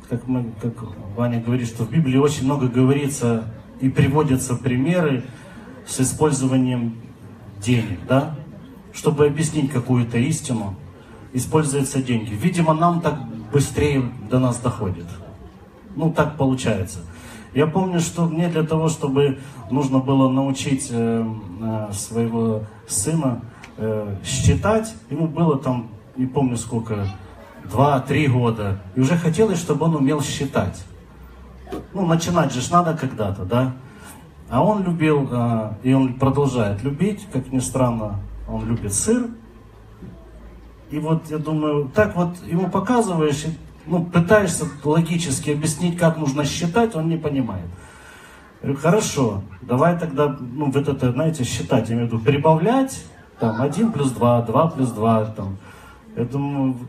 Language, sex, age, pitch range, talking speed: Russian, male, 30-49, 115-155 Hz, 130 wpm